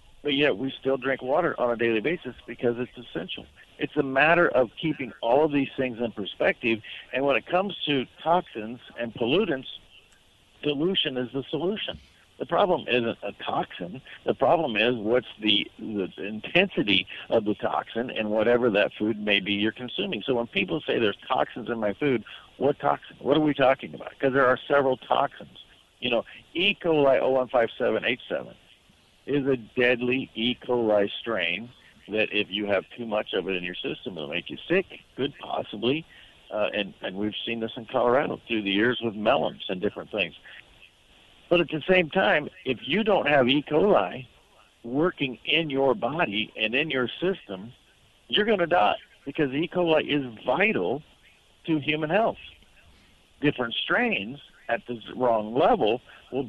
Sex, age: male, 60-79